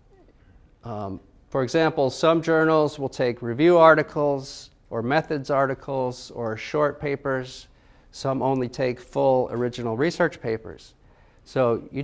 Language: English